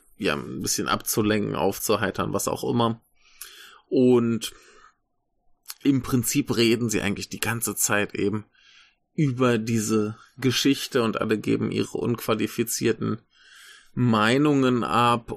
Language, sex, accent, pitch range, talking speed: German, male, German, 110-125 Hz, 110 wpm